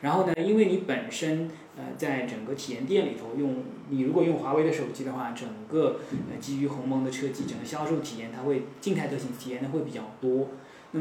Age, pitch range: 20-39, 135-175 Hz